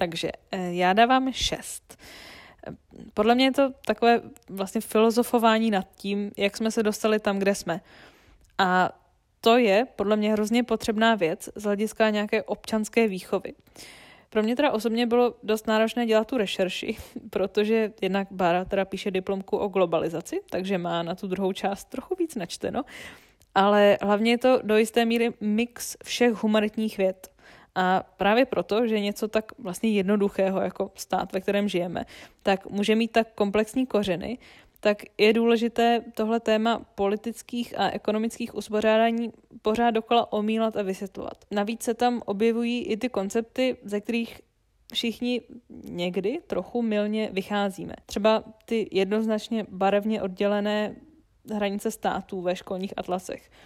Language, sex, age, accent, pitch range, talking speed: Czech, female, 20-39, native, 195-230 Hz, 145 wpm